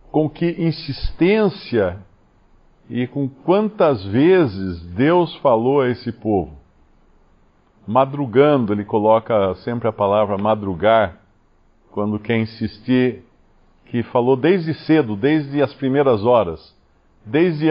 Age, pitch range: 50-69, 105-140 Hz